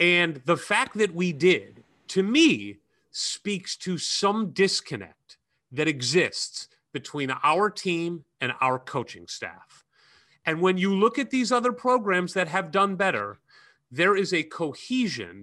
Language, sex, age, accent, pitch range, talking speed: English, male, 30-49, American, 135-190 Hz, 145 wpm